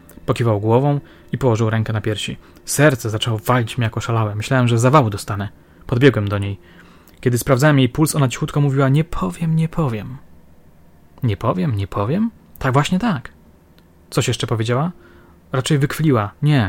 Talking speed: 155 wpm